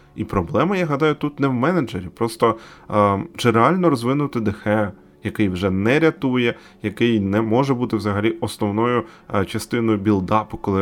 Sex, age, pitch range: male, 20-39, 100-130 Hz